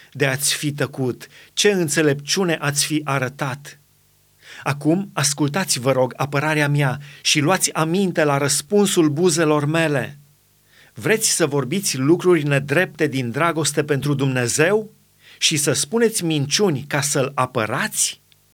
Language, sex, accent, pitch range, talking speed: Romanian, male, native, 140-170 Hz, 125 wpm